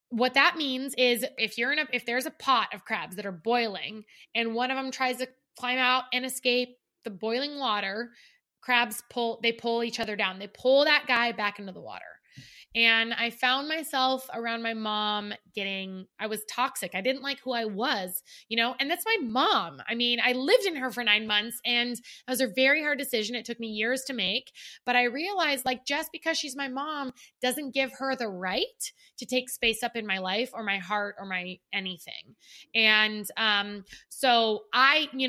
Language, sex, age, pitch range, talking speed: English, female, 20-39, 225-275 Hz, 205 wpm